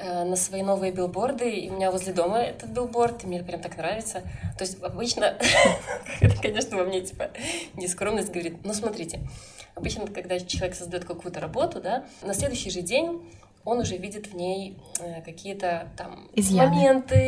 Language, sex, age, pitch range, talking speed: Russian, female, 20-39, 175-210 Hz, 165 wpm